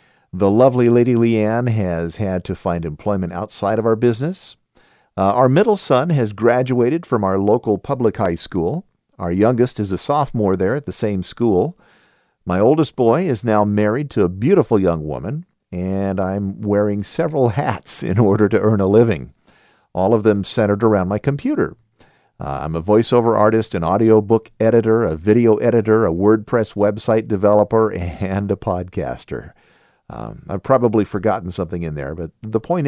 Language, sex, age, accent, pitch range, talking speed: English, male, 50-69, American, 95-115 Hz, 170 wpm